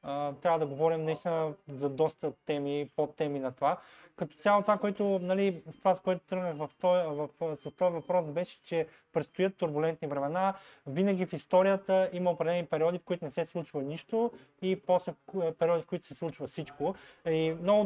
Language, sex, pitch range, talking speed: Bulgarian, male, 160-190 Hz, 180 wpm